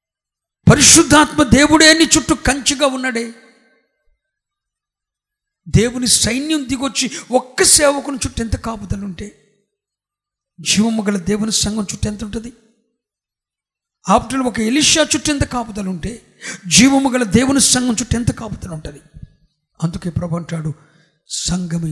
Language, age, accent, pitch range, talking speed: Telugu, 50-69, native, 200-300 Hz, 105 wpm